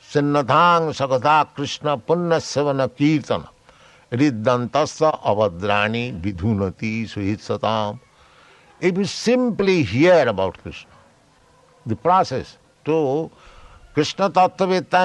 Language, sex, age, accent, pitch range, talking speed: English, male, 60-79, Indian, 110-170 Hz, 45 wpm